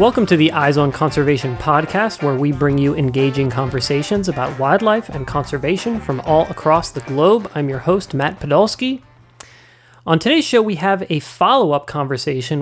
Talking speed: 165 wpm